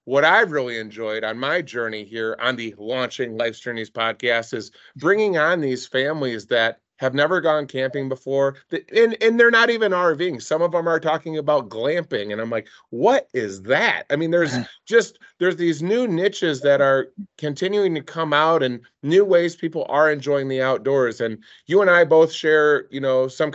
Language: English